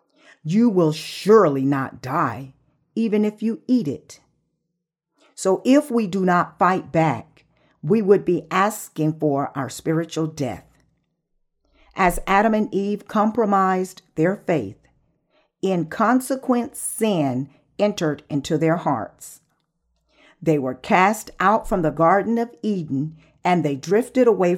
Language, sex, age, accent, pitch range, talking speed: English, female, 50-69, American, 150-215 Hz, 125 wpm